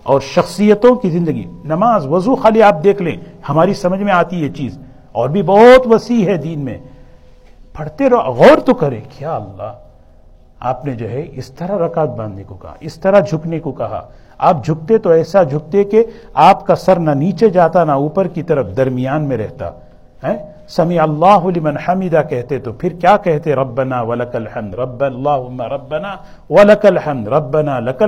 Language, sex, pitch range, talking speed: Urdu, male, 125-200 Hz, 175 wpm